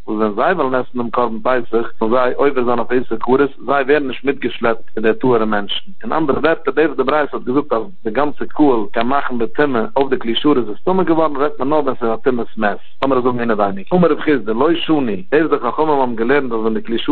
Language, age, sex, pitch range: English, 60-79, male, 120-145 Hz